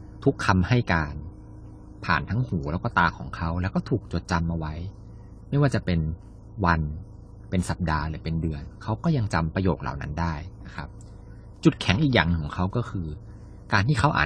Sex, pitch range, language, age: male, 90-115 Hz, Thai, 20-39